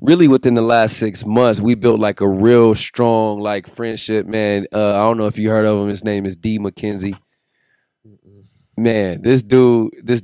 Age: 20-39